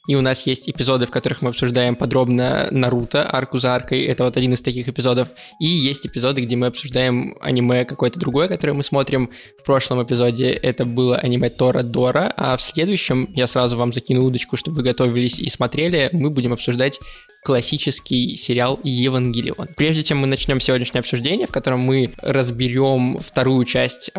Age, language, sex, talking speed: 20-39, Russian, male, 175 wpm